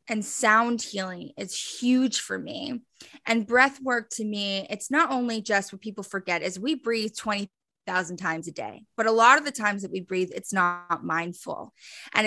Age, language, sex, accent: 20-39, English, female, American